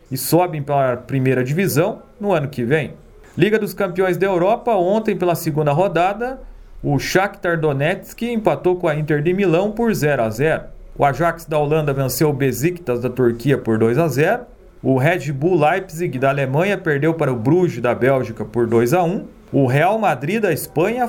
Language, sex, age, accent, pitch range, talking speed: Portuguese, male, 40-59, Brazilian, 135-180 Hz, 190 wpm